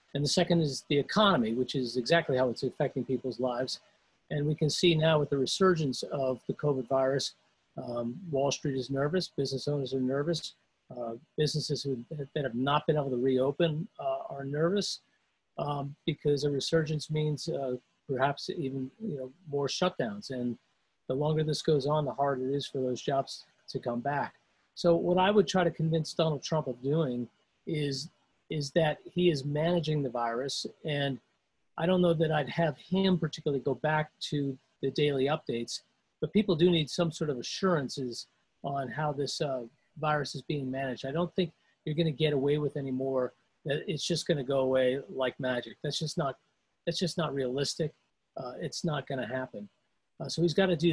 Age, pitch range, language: 40-59, 135-170 Hz, English